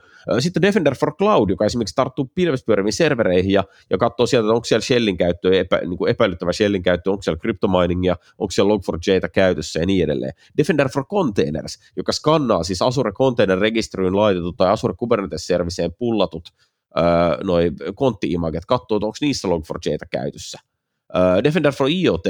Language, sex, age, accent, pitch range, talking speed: Finnish, male, 30-49, native, 90-125 Hz, 165 wpm